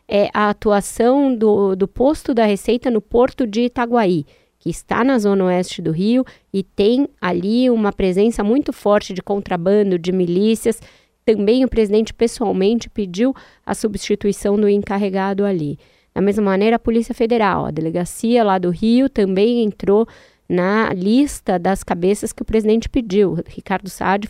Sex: female